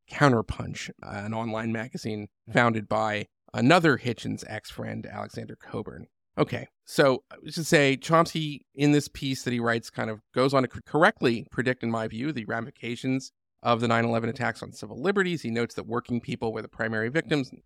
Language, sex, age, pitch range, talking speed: English, male, 40-59, 115-150 Hz, 170 wpm